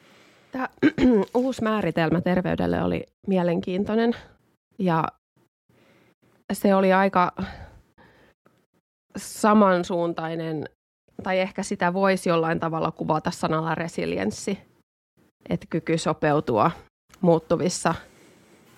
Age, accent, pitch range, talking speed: 20-39, native, 165-190 Hz, 75 wpm